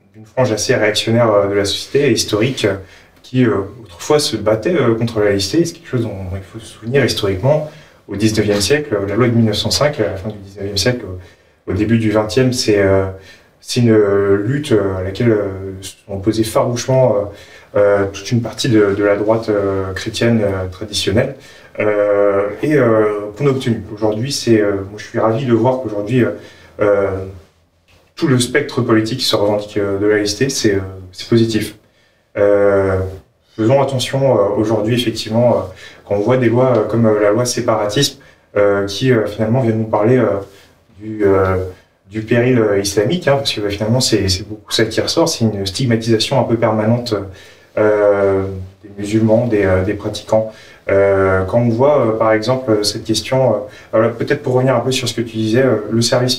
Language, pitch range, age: French, 100-120 Hz, 30-49